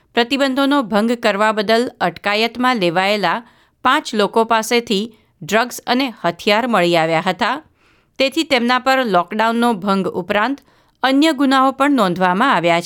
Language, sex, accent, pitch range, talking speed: Gujarati, female, native, 185-245 Hz, 120 wpm